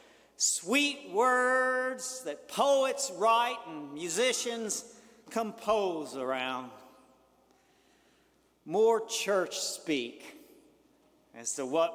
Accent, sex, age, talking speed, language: American, male, 50-69, 75 wpm, English